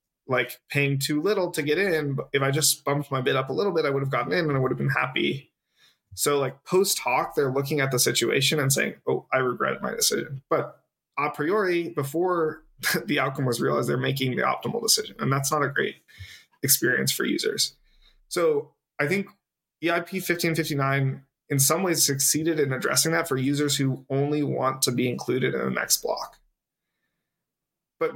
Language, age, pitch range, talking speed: English, 20-39, 130-155 Hz, 190 wpm